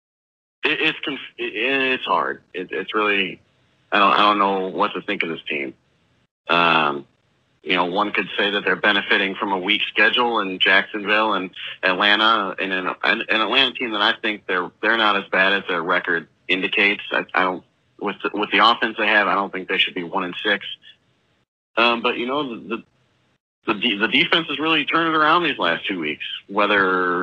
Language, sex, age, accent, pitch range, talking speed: English, male, 30-49, American, 95-115 Hz, 185 wpm